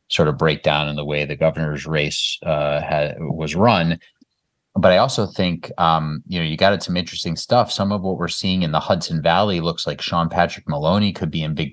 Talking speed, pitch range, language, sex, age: 225 wpm, 75-90 Hz, English, male, 30-49